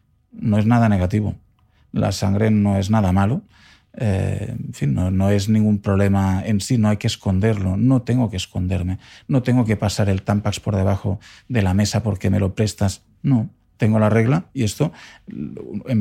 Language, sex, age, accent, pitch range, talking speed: Spanish, male, 40-59, Spanish, 100-115 Hz, 185 wpm